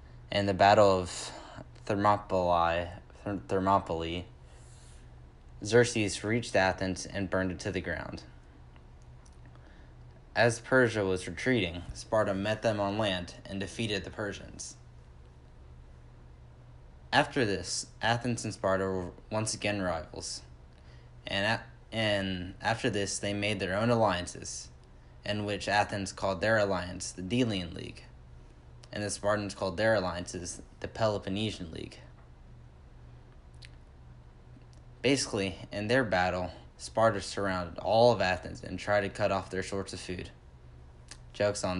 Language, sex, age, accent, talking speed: English, male, 20-39, American, 120 wpm